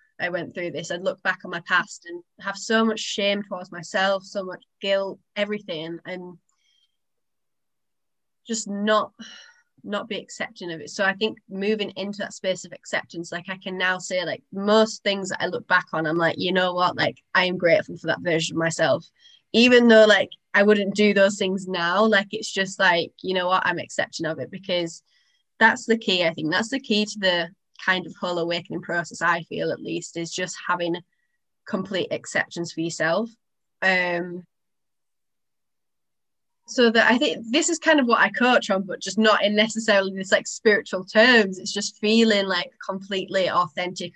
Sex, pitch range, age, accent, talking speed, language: female, 180-215 Hz, 20-39, British, 190 wpm, English